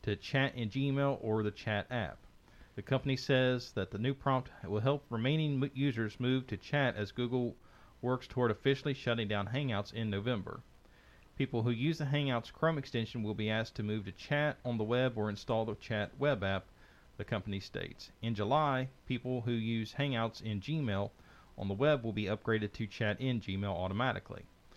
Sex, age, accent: male, 40-59, American